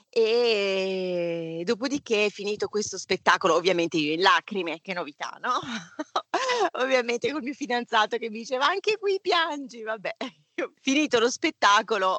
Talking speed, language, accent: 130 wpm, Italian, native